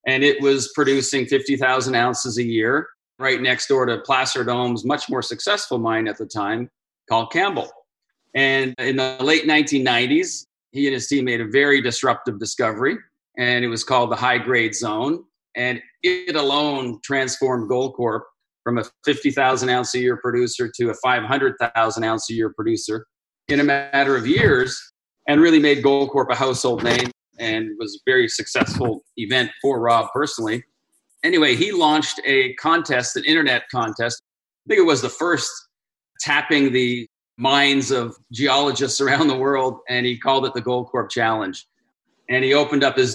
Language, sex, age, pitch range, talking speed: English, male, 40-59, 125-140 Hz, 165 wpm